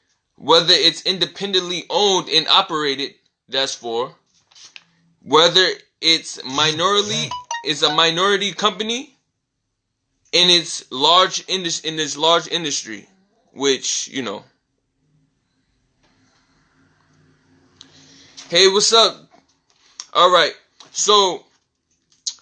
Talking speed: 85 wpm